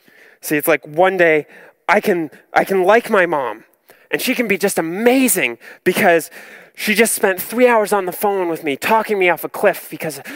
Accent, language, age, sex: American, English, 20-39, male